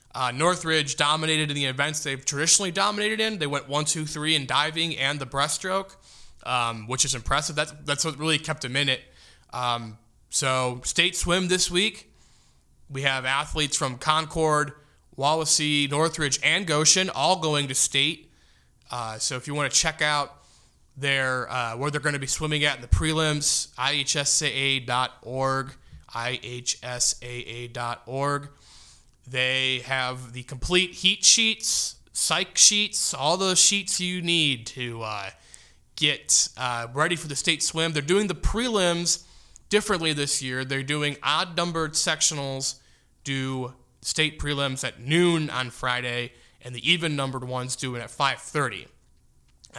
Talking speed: 145 wpm